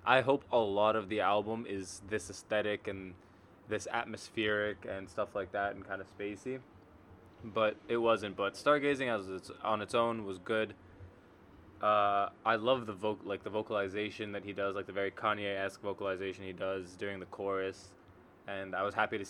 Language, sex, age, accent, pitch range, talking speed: English, male, 20-39, American, 95-115 Hz, 185 wpm